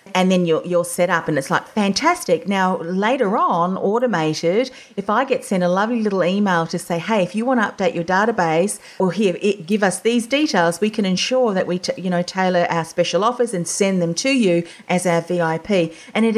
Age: 40-59